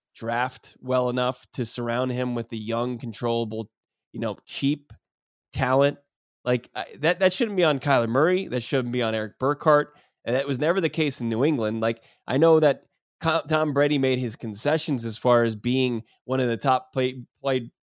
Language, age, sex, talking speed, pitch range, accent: English, 20-39, male, 185 wpm, 120-145 Hz, American